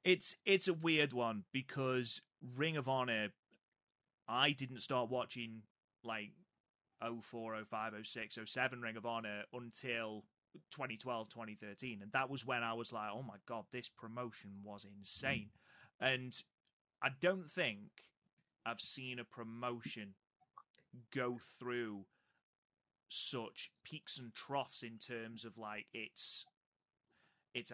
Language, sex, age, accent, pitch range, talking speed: English, male, 30-49, British, 110-130 Hz, 135 wpm